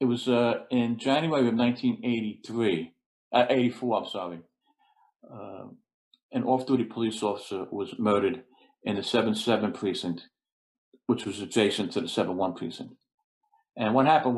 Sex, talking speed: male, 155 wpm